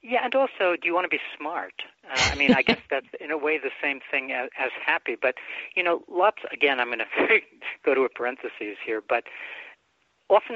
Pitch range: 120-180 Hz